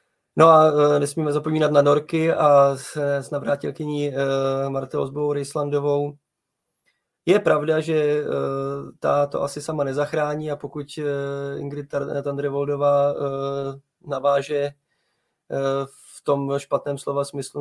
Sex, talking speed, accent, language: male, 100 wpm, native, Czech